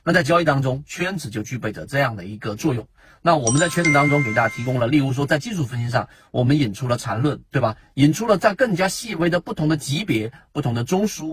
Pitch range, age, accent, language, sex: 115-165 Hz, 40-59, native, Chinese, male